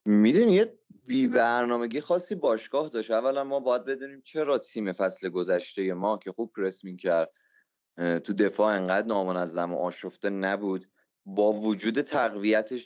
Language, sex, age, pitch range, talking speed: Persian, male, 30-49, 95-130 Hz, 140 wpm